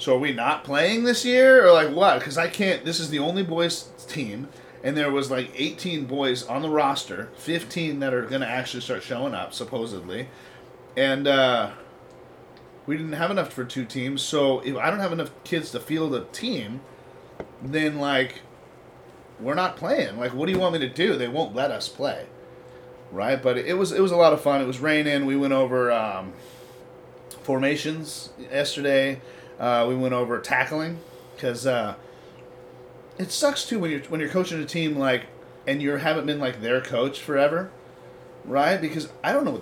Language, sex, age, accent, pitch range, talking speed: English, male, 30-49, American, 130-170 Hz, 190 wpm